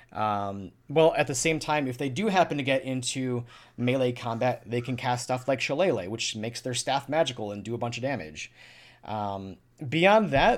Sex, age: male, 30-49